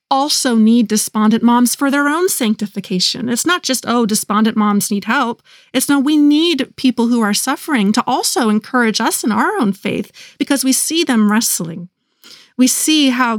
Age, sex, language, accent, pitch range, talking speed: 30-49, female, English, American, 210-260 Hz, 180 wpm